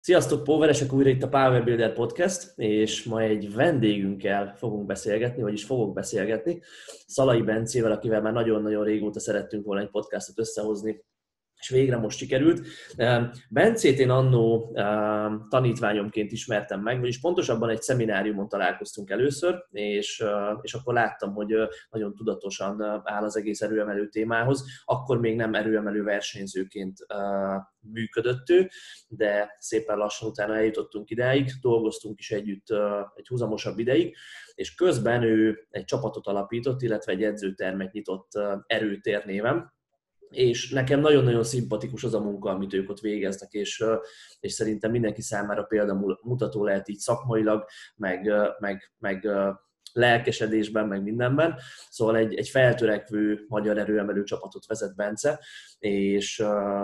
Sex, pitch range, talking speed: male, 105-120 Hz, 130 wpm